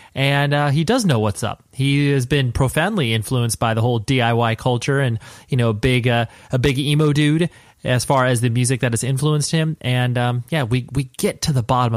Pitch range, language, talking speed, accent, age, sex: 115-145 Hz, English, 215 wpm, American, 30-49, male